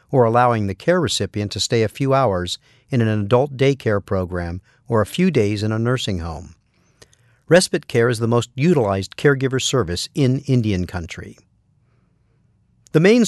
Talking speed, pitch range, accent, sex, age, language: 165 wpm, 110-135 Hz, American, male, 50-69, English